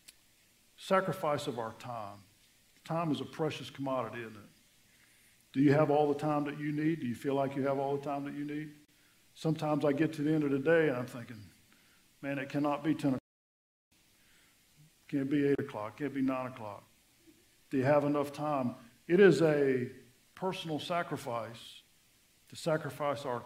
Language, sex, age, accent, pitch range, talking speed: English, male, 50-69, American, 120-165 Hz, 180 wpm